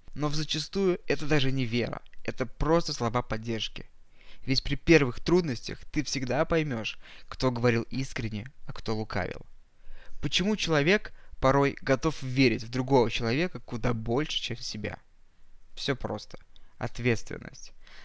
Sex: male